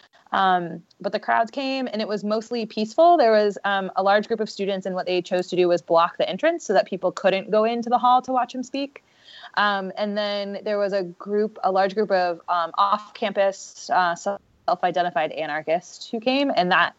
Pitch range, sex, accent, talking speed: 170-210 Hz, female, American, 215 wpm